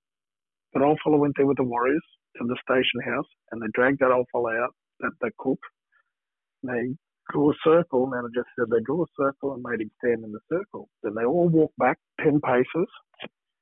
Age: 50-69